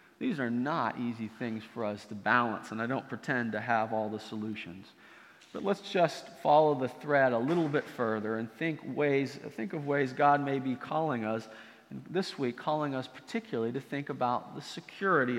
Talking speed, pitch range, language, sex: 195 wpm, 120-155 Hz, English, male